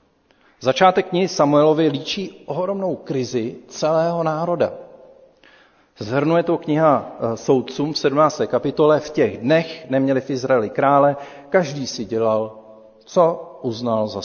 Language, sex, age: Czech, male, 40-59